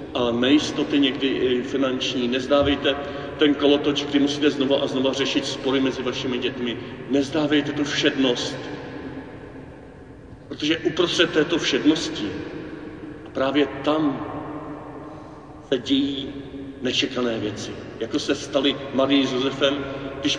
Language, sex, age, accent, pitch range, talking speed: Czech, male, 40-59, native, 125-150 Hz, 110 wpm